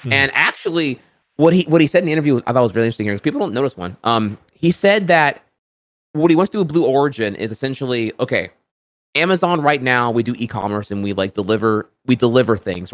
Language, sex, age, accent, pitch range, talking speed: English, male, 20-39, American, 105-130 Hz, 225 wpm